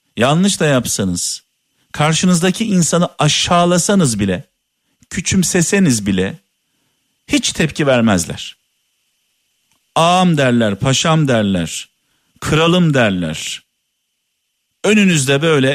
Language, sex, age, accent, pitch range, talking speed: Turkish, male, 50-69, native, 115-170 Hz, 75 wpm